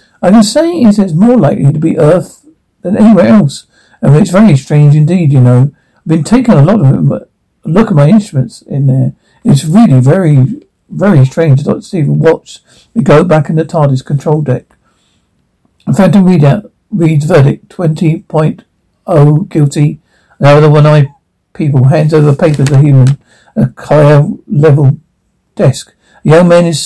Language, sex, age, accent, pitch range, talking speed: English, male, 60-79, British, 140-195 Hz, 170 wpm